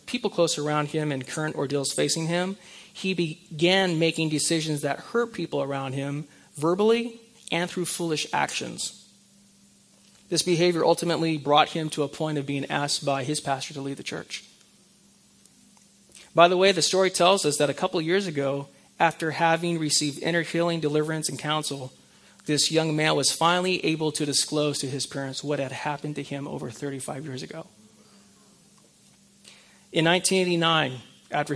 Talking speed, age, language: 160 wpm, 30-49, English